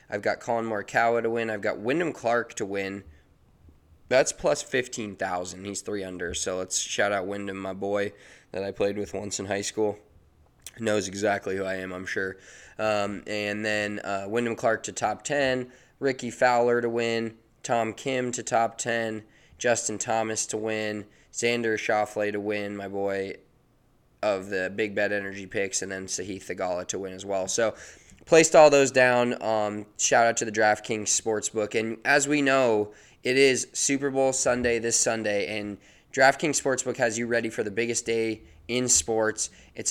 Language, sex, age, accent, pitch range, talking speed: English, male, 20-39, American, 105-125 Hz, 175 wpm